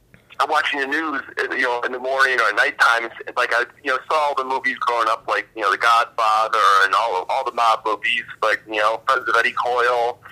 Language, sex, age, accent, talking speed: English, male, 40-59, American, 225 wpm